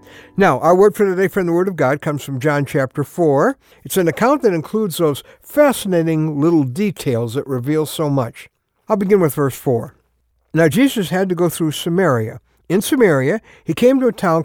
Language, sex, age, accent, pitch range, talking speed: English, male, 60-79, American, 130-195 Hz, 195 wpm